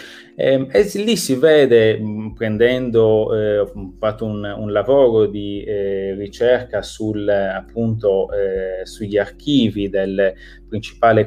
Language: Italian